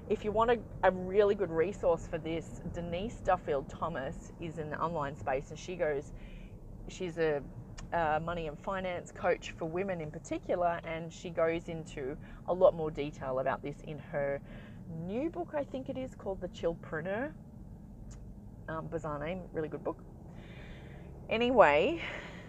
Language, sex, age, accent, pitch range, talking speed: English, female, 30-49, Australian, 150-195 Hz, 165 wpm